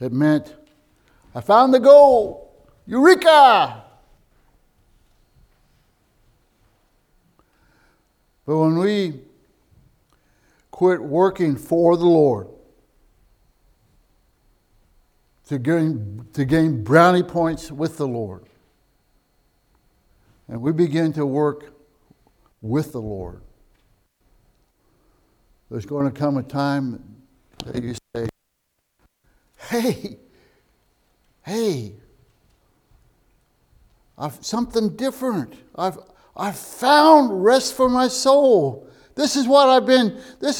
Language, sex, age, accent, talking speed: English, male, 60-79, American, 85 wpm